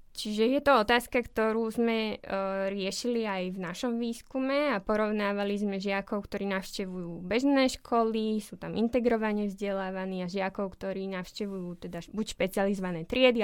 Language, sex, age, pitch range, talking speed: Slovak, female, 20-39, 200-240 Hz, 145 wpm